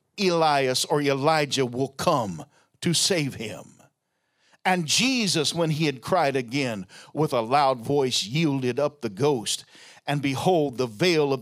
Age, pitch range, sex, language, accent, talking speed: 50-69, 130-170 Hz, male, English, American, 145 wpm